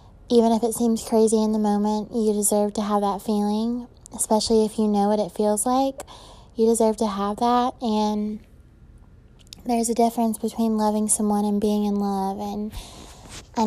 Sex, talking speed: female, 175 wpm